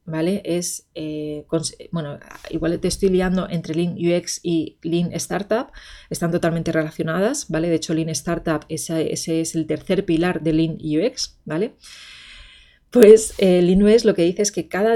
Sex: female